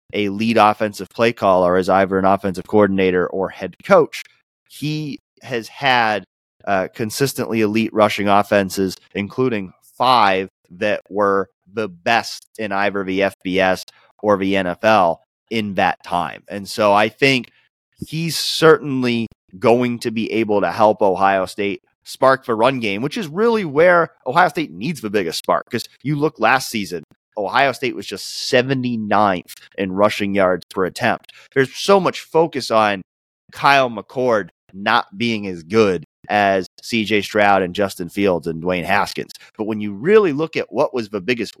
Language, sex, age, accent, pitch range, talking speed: English, male, 30-49, American, 95-135 Hz, 160 wpm